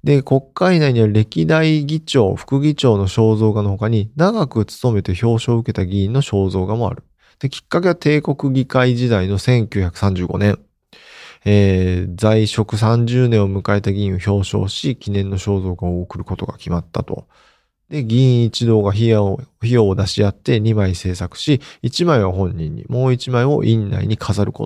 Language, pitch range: Japanese, 100-130 Hz